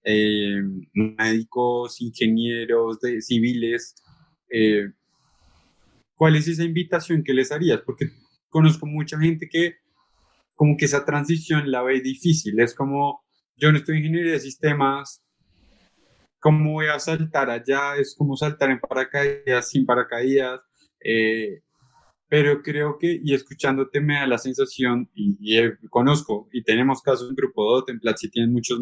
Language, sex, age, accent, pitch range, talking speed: Spanish, male, 20-39, Colombian, 120-150 Hz, 145 wpm